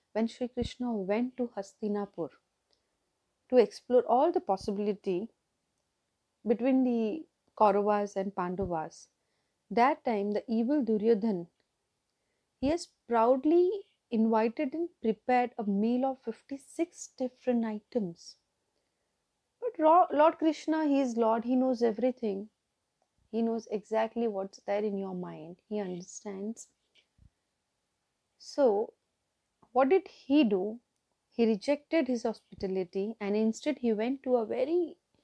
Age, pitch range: 30-49, 205-265 Hz